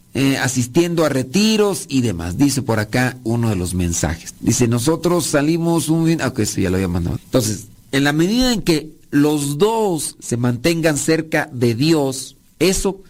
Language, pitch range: Spanish, 130-170 Hz